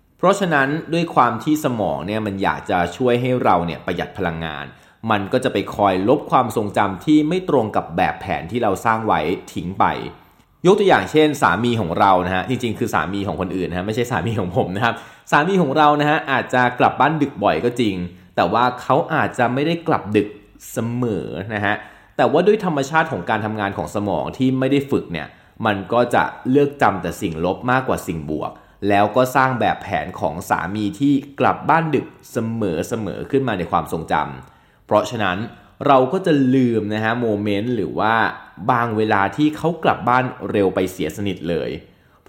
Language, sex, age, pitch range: Thai, male, 20-39, 100-140 Hz